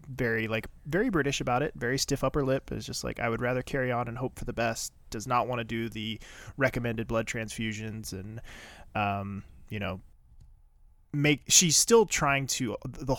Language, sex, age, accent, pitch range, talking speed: English, male, 20-39, American, 110-135 Hz, 190 wpm